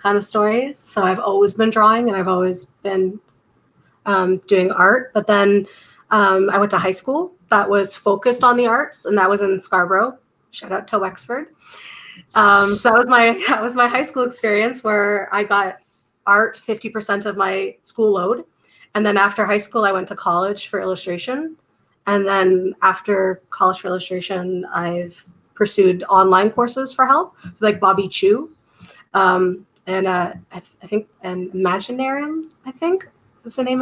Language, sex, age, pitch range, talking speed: English, female, 30-49, 185-220 Hz, 175 wpm